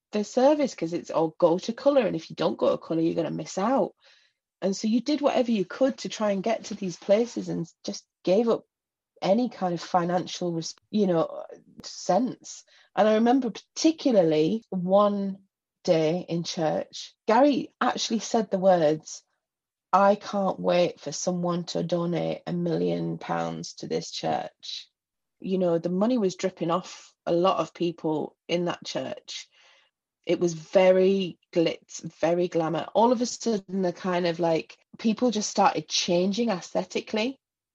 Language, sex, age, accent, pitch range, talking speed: English, female, 30-49, British, 165-205 Hz, 165 wpm